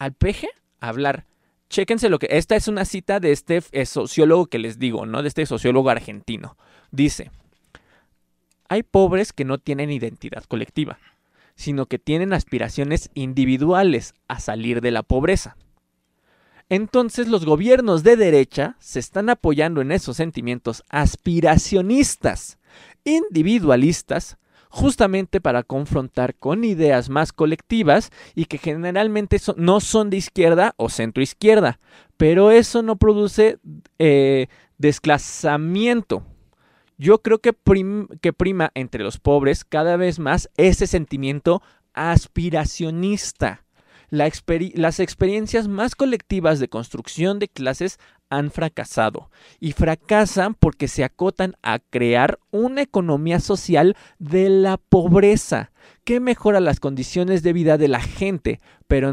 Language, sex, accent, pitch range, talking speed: Spanish, male, Mexican, 135-195 Hz, 125 wpm